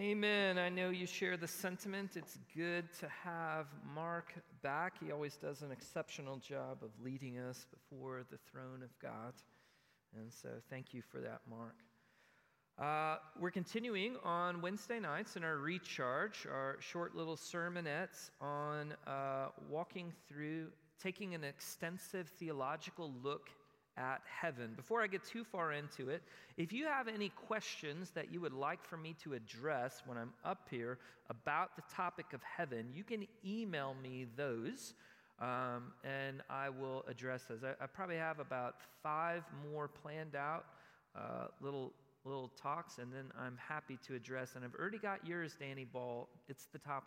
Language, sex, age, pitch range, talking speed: English, male, 40-59, 130-180 Hz, 160 wpm